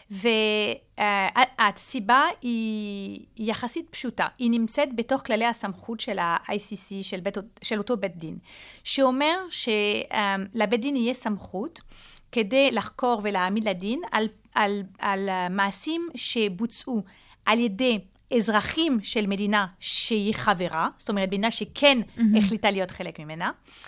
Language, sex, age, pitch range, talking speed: Hebrew, female, 30-49, 205-265 Hz, 120 wpm